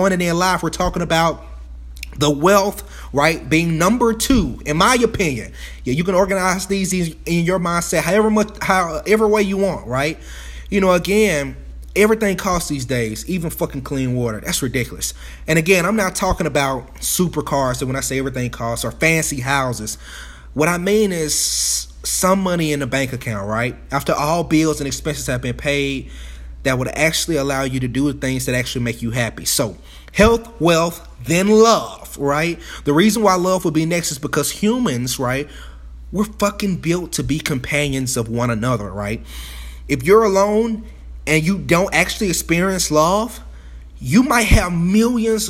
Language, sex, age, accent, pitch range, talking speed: English, male, 30-49, American, 125-190 Hz, 175 wpm